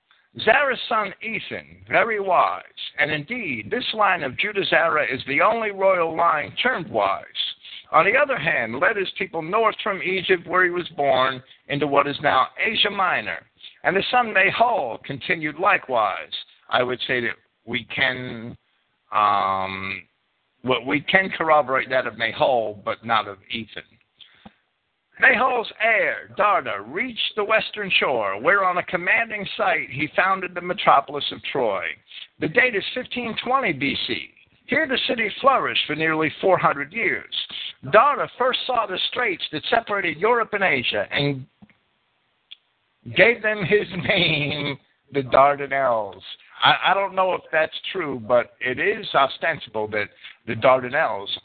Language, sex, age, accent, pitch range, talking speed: English, male, 60-79, American, 135-210 Hz, 145 wpm